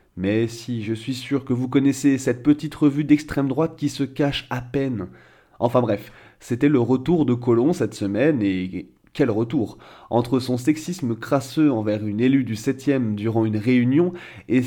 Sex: male